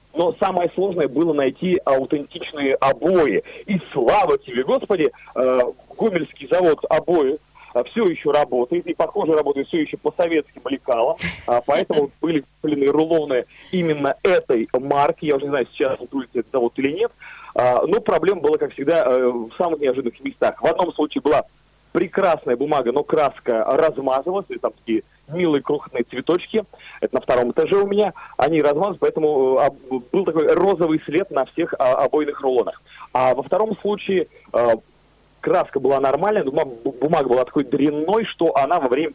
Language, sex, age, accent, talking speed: Russian, male, 30-49, native, 150 wpm